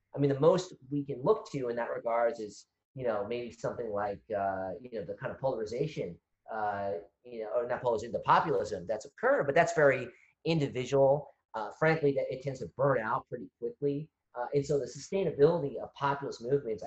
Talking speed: 200 wpm